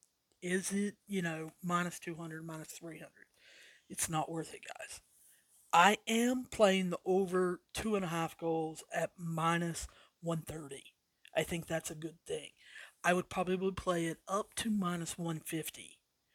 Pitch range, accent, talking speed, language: 165-190 Hz, American, 150 wpm, English